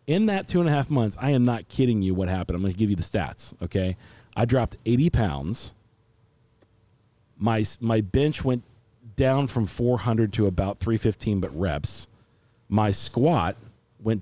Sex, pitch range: male, 100-125 Hz